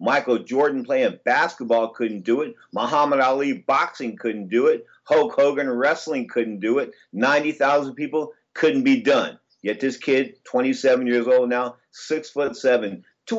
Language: English